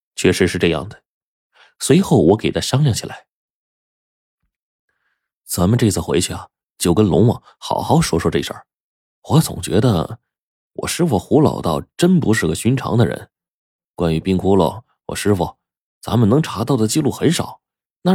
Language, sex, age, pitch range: Chinese, male, 30-49, 85-115 Hz